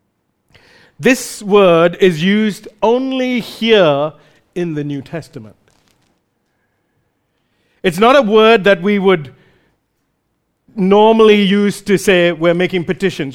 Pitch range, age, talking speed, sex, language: 175-225 Hz, 50-69, 110 wpm, male, English